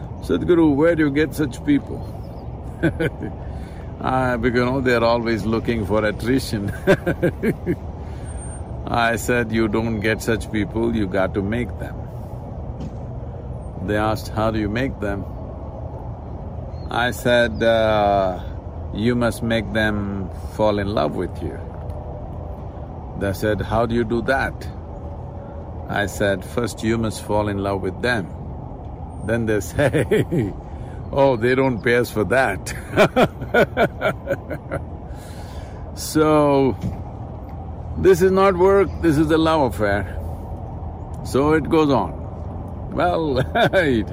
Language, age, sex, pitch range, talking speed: English, 50-69, male, 90-120 Hz, 120 wpm